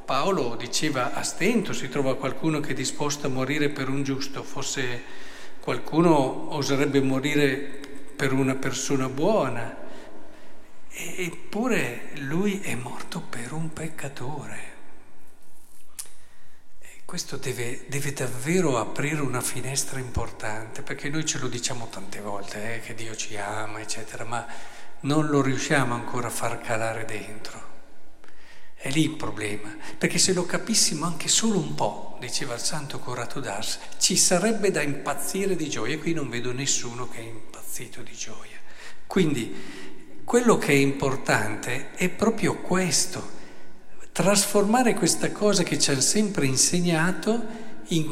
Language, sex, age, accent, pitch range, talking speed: Italian, male, 50-69, native, 130-180 Hz, 140 wpm